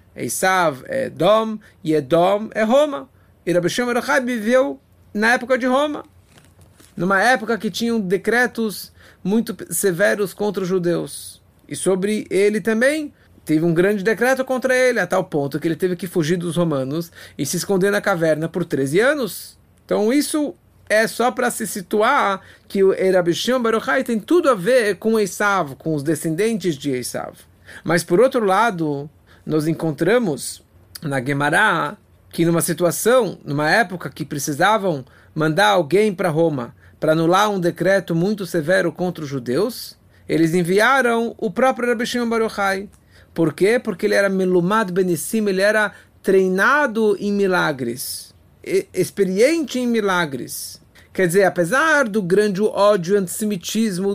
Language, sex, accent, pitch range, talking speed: English, male, Brazilian, 170-220 Hz, 150 wpm